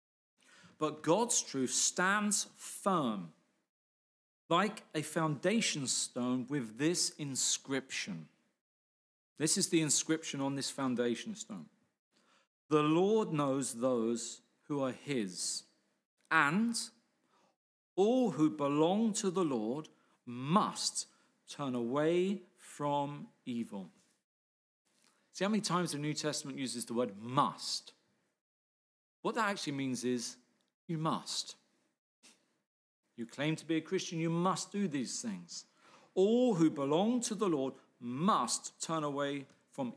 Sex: male